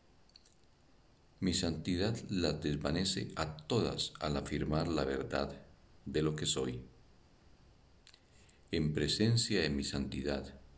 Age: 50-69